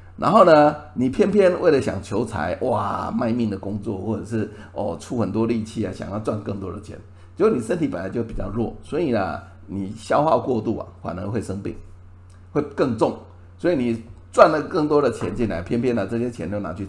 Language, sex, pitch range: Chinese, male, 90-115 Hz